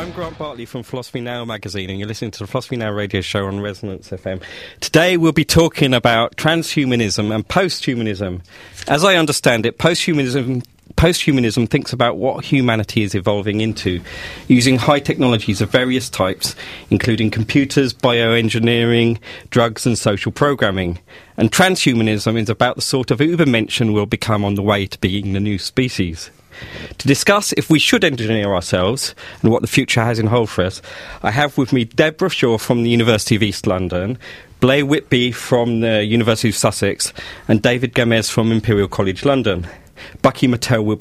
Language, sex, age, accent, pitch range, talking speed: English, male, 40-59, British, 105-135 Hz, 170 wpm